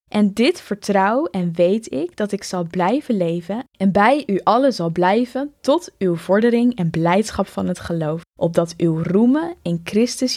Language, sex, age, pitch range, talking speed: Dutch, female, 10-29, 175-235 Hz, 175 wpm